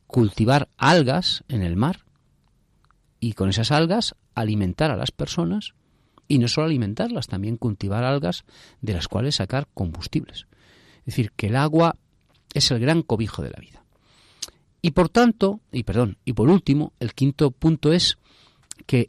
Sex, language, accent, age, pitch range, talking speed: male, Spanish, Spanish, 40-59, 105-150 Hz, 155 wpm